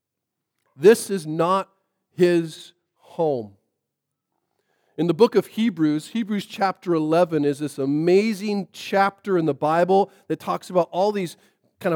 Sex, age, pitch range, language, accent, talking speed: male, 40-59, 175-230 Hz, English, American, 130 wpm